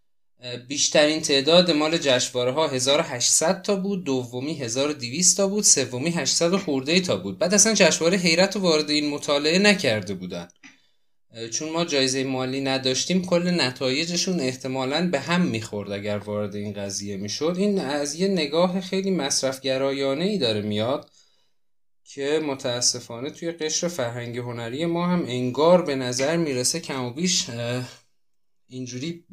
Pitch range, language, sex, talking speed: 115-165 Hz, Persian, male, 145 wpm